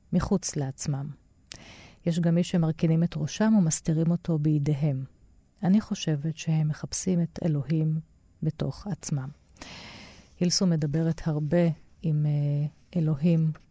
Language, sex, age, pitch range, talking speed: Hebrew, female, 30-49, 145-180 Hz, 105 wpm